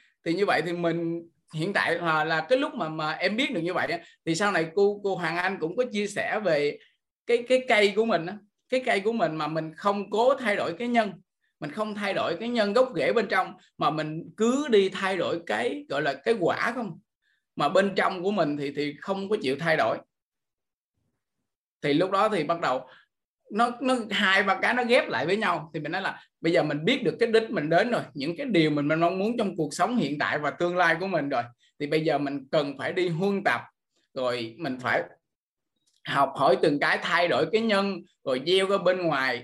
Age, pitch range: 20-39, 160-225 Hz